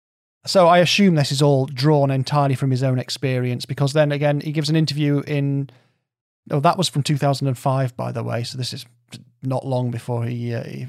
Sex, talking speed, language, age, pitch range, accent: male, 200 wpm, English, 30-49, 125-150 Hz, British